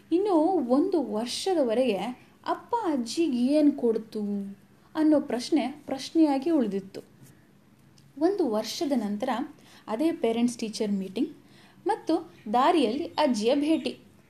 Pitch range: 240-335 Hz